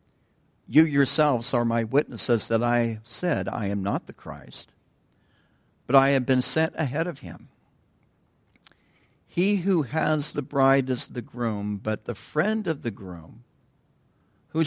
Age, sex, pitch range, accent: 60-79, male, 100-135 Hz, American